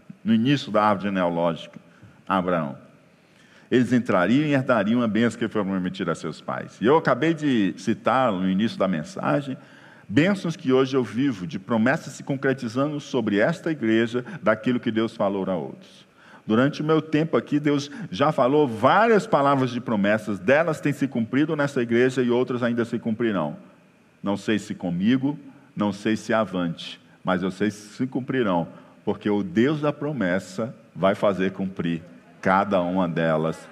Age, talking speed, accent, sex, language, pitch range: 50-69, 165 wpm, Brazilian, male, Portuguese, 110-160 Hz